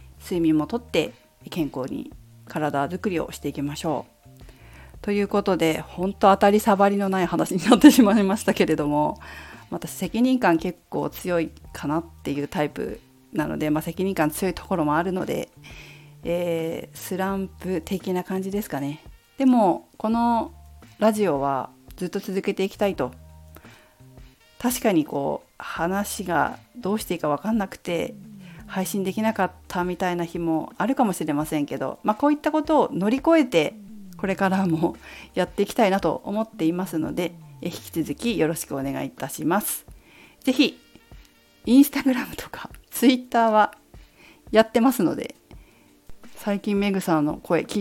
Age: 40-59